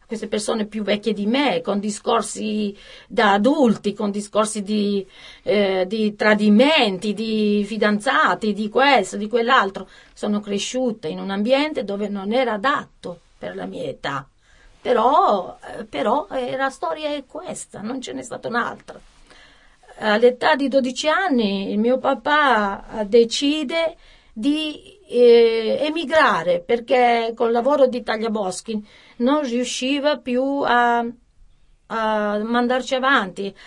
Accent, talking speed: native, 120 wpm